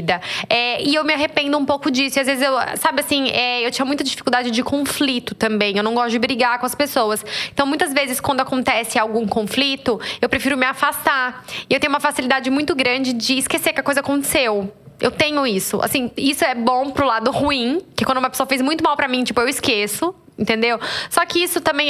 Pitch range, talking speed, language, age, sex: 235-280 Hz, 220 wpm, Portuguese, 10-29, female